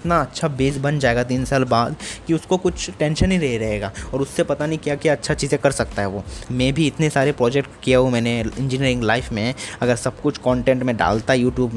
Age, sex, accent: 20-39, male, native